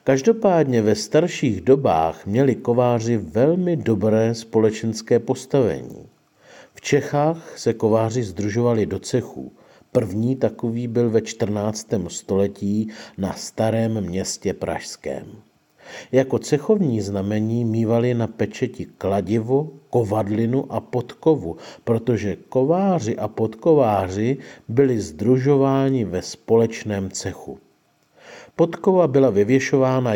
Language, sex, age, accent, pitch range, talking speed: Czech, male, 50-69, native, 105-135 Hz, 100 wpm